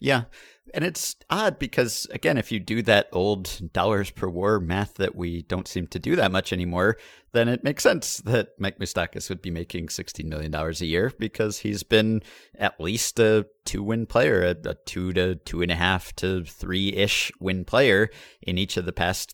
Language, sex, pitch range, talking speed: English, male, 90-115 Hz, 190 wpm